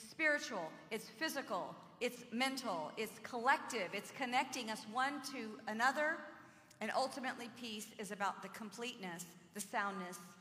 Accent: American